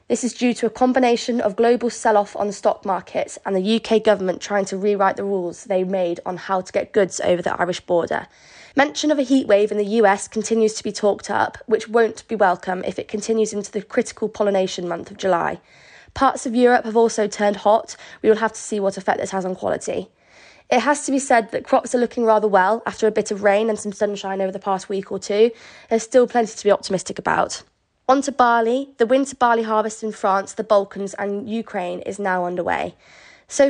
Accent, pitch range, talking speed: British, 195-235 Hz, 225 wpm